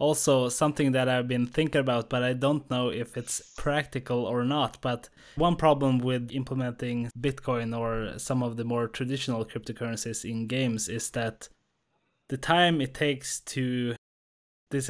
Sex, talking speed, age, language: male, 155 wpm, 20-39, English